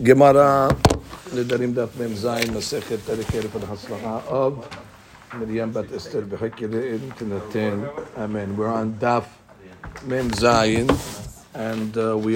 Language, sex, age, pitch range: English, male, 60-79, 110-135 Hz